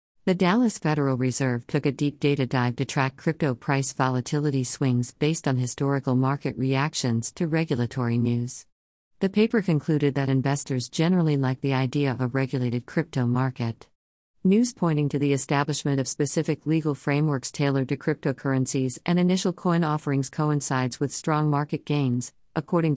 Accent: American